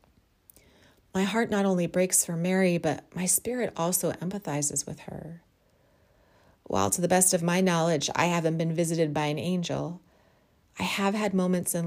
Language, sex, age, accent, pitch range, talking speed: English, female, 30-49, American, 165-200 Hz, 165 wpm